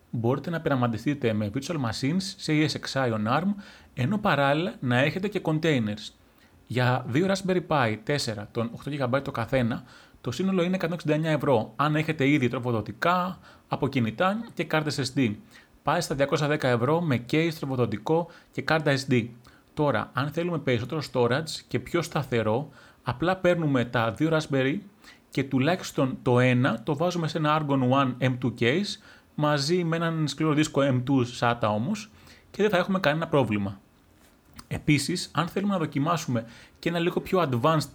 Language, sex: Greek, male